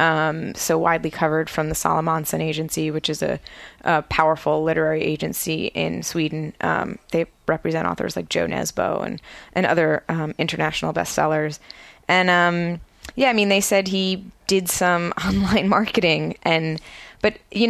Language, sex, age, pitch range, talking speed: English, female, 20-39, 160-195 Hz, 155 wpm